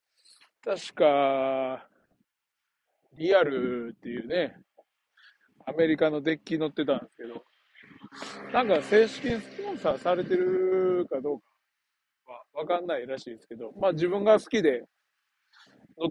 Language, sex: Japanese, male